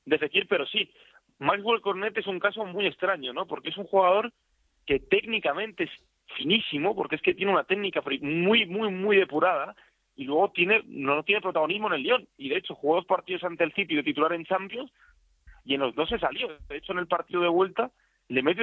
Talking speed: 215 wpm